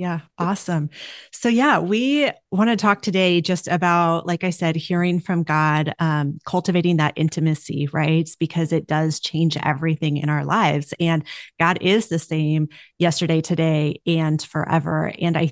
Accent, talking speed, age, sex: American, 160 wpm, 30-49, female